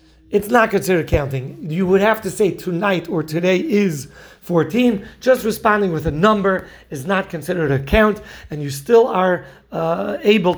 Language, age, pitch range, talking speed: English, 40-59, 175-220 Hz, 170 wpm